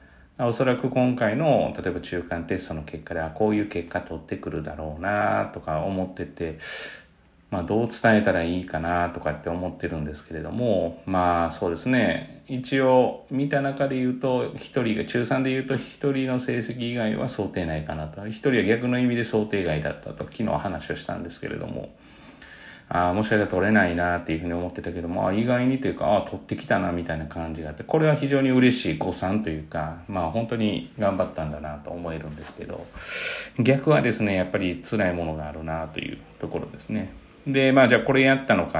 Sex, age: male, 40-59